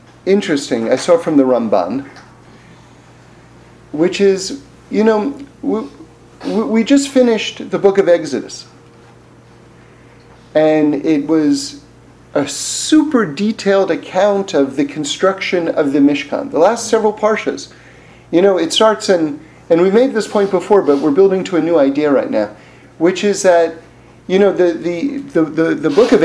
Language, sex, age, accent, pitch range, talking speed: English, male, 40-59, American, 175-255 Hz, 155 wpm